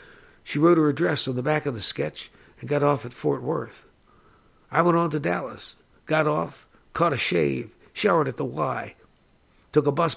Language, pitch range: English, 115-145 Hz